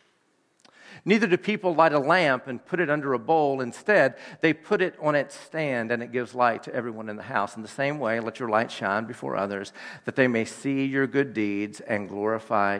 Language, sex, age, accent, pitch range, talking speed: English, male, 50-69, American, 115-165 Hz, 220 wpm